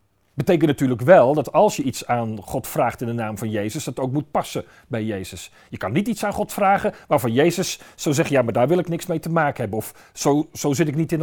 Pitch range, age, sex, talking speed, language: 120-185 Hz, 40-59, male, 260 wpm, Dutch